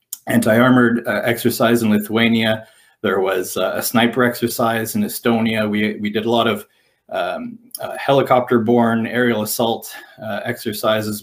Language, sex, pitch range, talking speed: English, male, 115-175 Hz, 140 wpm